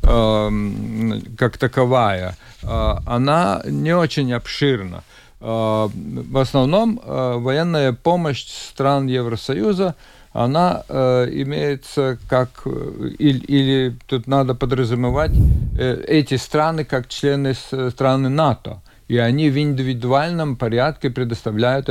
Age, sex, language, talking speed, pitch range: 50-69, male, Russian, 90 wpm, 115-140 Hz